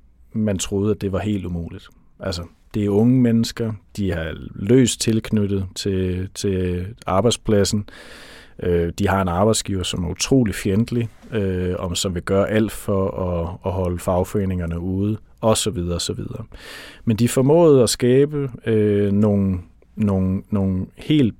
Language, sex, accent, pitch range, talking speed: Danish, male, native, 95-115 Hz, 130 wpm